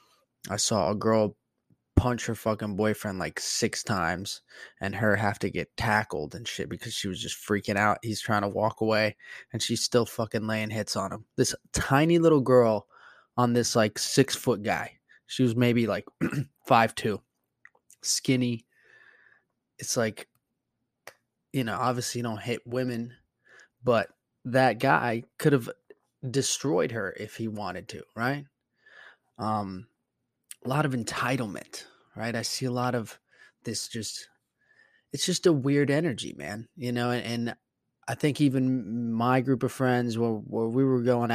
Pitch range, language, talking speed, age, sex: 105-125 Hz, English, 160 wpm, 20-39, male